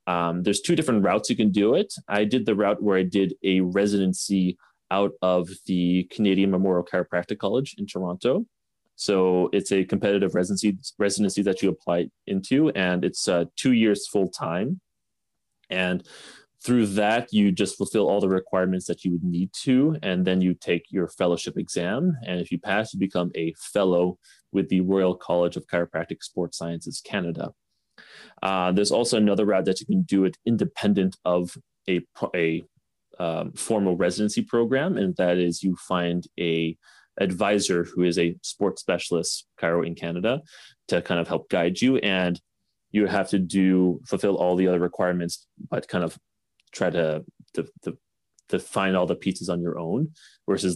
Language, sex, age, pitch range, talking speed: English, male, 30-49, 90-100 Hz, 170 wpm